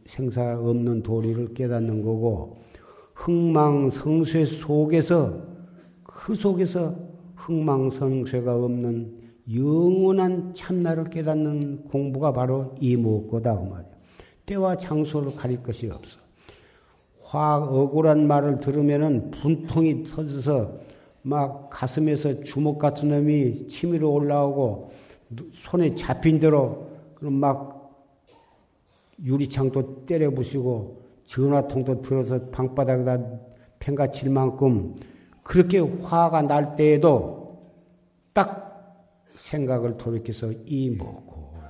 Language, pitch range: Korean, 120-150 Hz